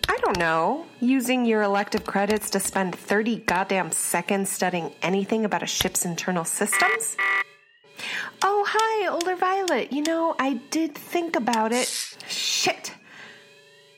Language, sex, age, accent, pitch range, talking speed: English, female, 30-49, American, 190-265 Hz, 135 wpm